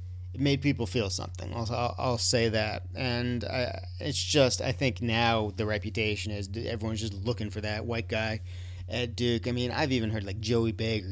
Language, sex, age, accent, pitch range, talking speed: English, male, 40-59, American, 90-125 Hz, 200 wpm